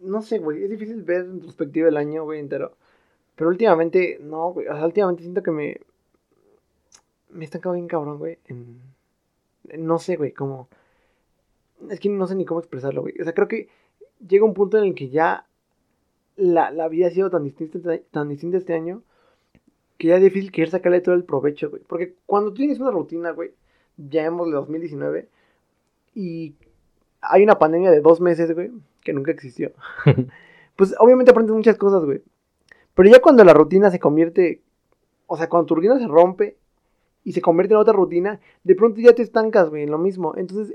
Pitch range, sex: 160-210 Hz, male